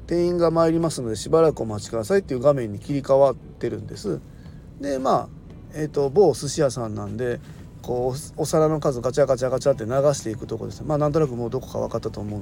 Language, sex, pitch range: Japanese, male, 125-160 Hz